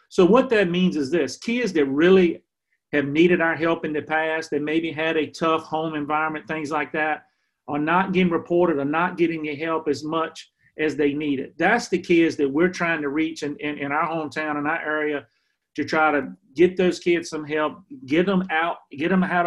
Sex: male